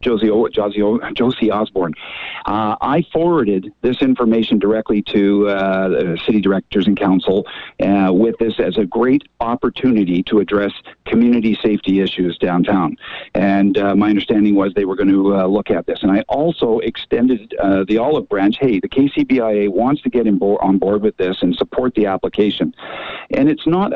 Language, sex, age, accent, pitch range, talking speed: English, male, 50-69, American, 95-115 Hz, 175 wpm